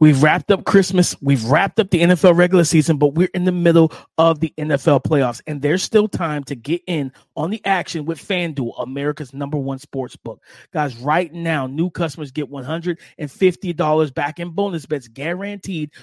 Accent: American